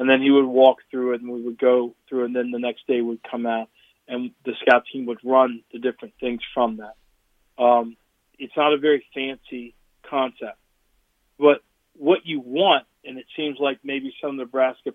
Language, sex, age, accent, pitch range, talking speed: English, male, 40-59, American, 120-145 Hz, 195 wpm